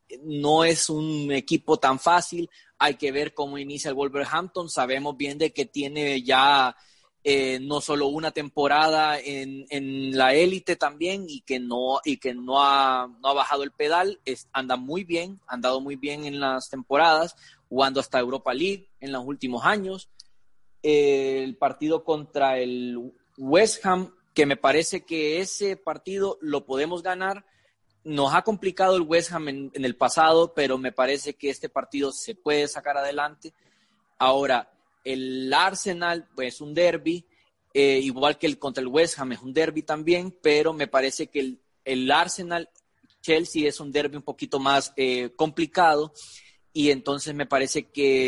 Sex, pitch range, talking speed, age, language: male, 135-160 Hz, 170 wpm, 20-39, Spanish